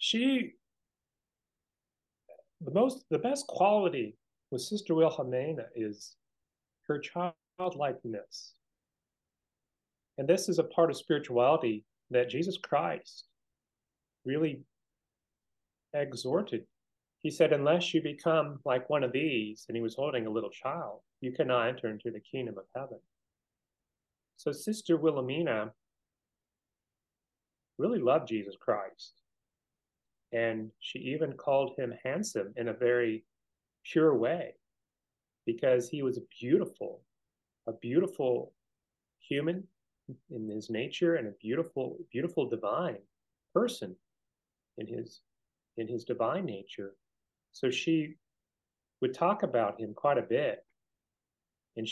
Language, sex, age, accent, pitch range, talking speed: English, male, 30-49, American, 115-160 Hz, 115 wpm